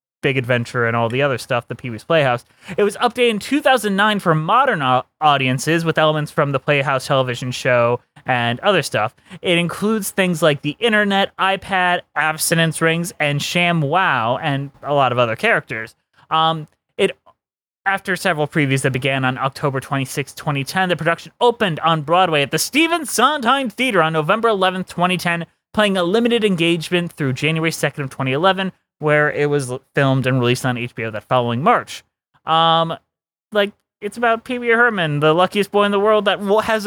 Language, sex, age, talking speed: English, male, 20-39, 175 wpm